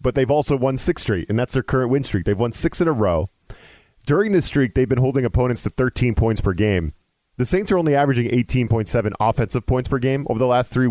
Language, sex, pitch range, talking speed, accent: English, male, 105-135 Hz, 240 wpm, American